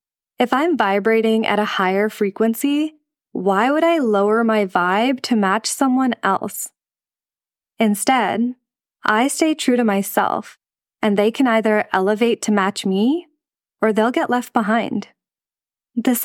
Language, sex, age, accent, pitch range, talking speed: English, female, 20-39, American, 200-245 Hz, 135 wpm